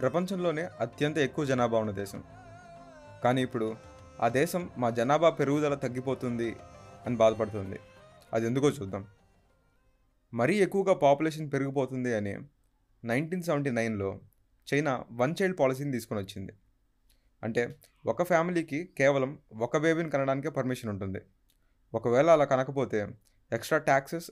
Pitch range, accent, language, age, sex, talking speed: 105-145 Hz, native, Telugu, 20-39, male, 115 wpm